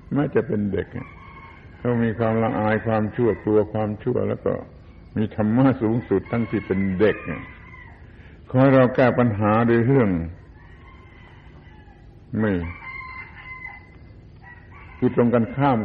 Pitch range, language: 95-115 Hz, Thai